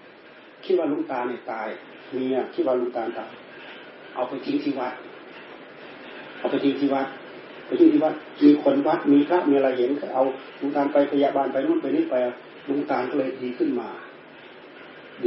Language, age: Thai, 30-49